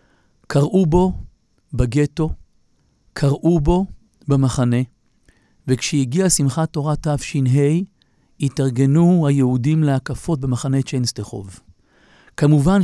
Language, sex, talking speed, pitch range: Hebrew, male, 75 wpm, 130-165 Hz